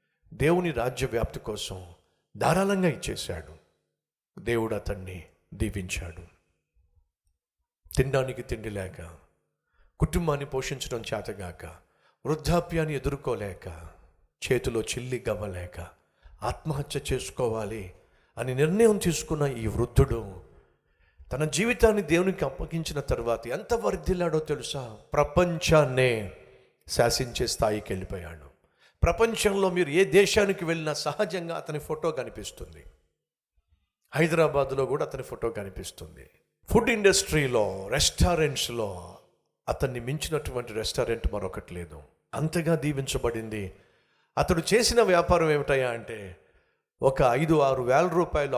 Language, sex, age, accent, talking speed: Telugu, male, 60-79, native, 75 wpm